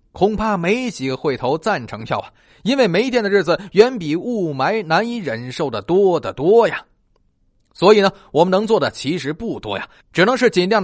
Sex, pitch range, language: male, 145-215 Hz, Chinese